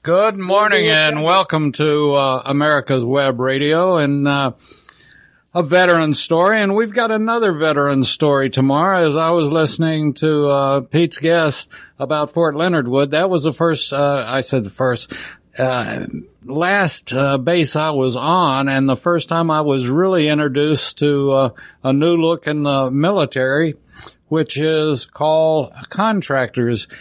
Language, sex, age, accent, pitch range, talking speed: English, male, 60-79, American, 135-170 Hz, 155 wpm